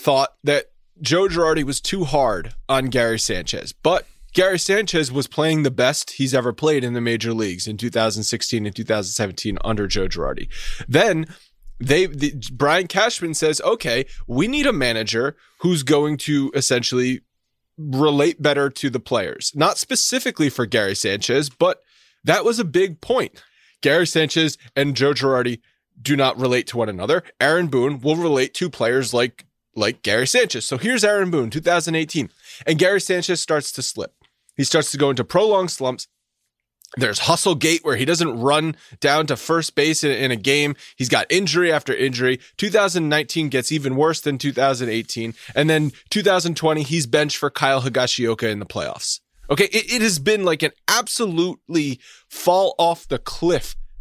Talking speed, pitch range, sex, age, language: 165 wpm, 125-170 Hz, male, 20-39, English